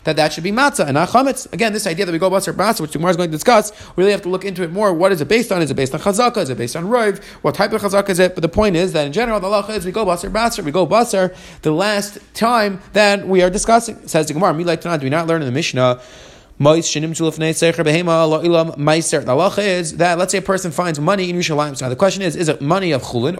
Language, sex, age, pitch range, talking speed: English, male, 30-49, 160-205 Hz, 285 wpm